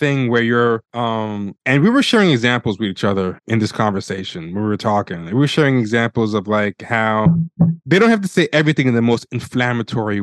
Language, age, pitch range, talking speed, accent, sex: English, 20-39, 110-130 Hz, 205 wpm, American, male